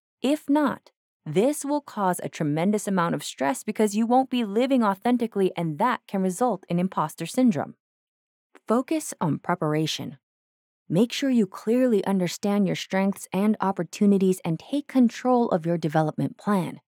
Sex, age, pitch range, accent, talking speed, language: female, 20-39, 170-230 Hz, American, 150 wpm, English